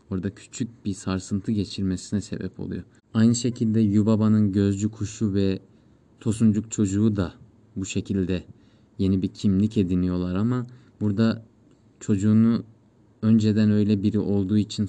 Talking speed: 125 wpm